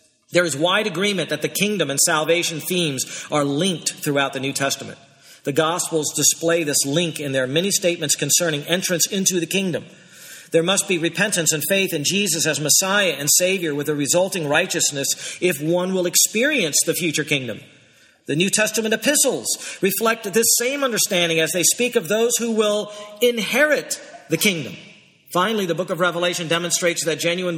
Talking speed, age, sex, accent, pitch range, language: 170 wpm, 50-69, male, American, 160-210 Hz, English